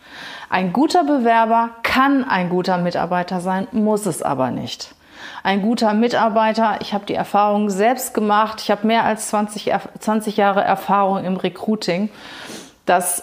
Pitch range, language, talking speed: 195-230 Hz, German, 145 wpm